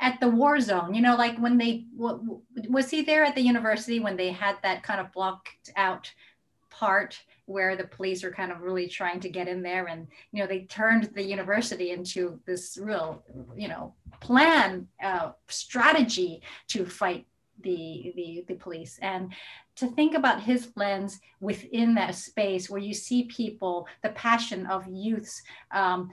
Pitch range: 185-235 Hz